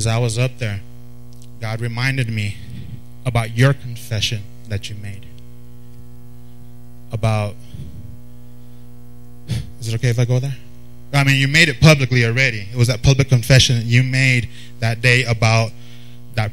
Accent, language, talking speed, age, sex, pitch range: American, English, 145 wpm, 20-39, male, 120-130 Hz